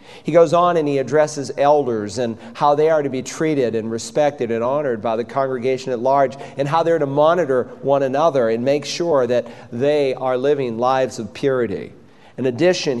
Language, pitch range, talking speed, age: English, 120-145 Hz, 195 wpm, 40-59